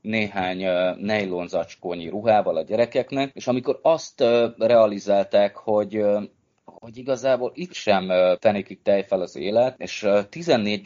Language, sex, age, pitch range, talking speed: Hungarian, male, 20-39, 95-120 Hz, 110 wpm